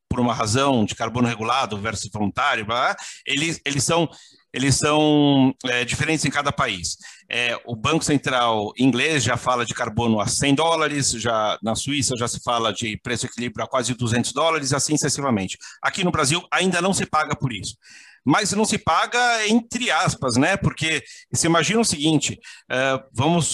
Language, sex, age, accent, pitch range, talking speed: Portuguese, male, 50-69, Brazilian, 115-150 Hz, 175 wpm